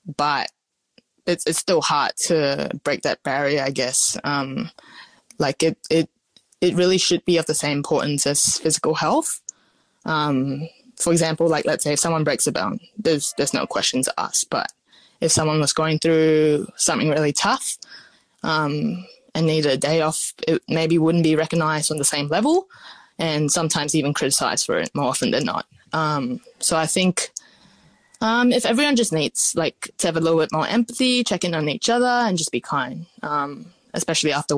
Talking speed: 180 wpm